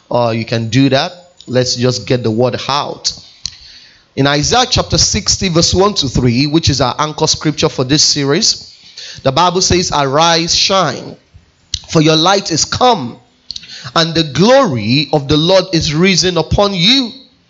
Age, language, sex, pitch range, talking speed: 30-49, English, male, 140-180 Hz, 160 wpm